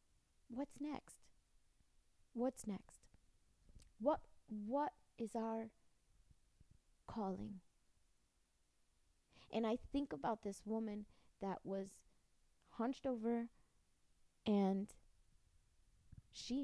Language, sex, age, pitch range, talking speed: English, female, 30-49, 195-245 Hz, 75 wpm